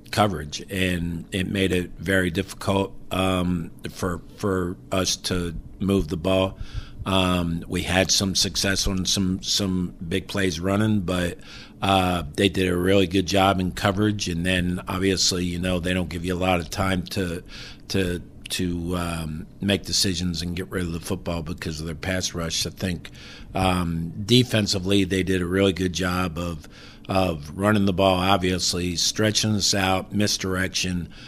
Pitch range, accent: 90-100 Hz, American